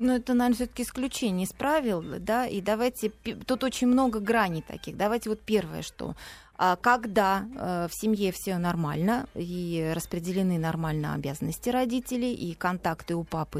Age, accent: 30-49, native